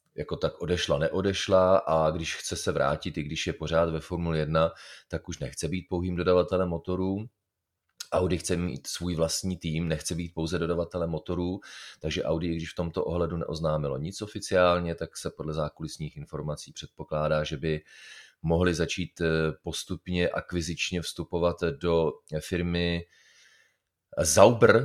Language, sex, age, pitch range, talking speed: Czech, male, 30-49, 80-90 Hz, 145 wpm